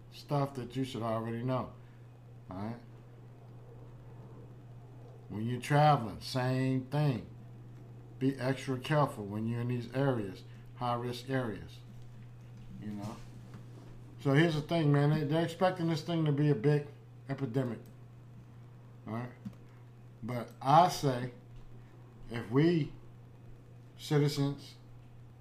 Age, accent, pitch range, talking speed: 50-69, American, 120-140 Hz, 110 wpm